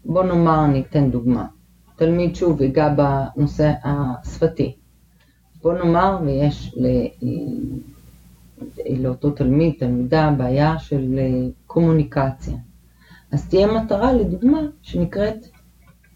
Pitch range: 130-165 Hz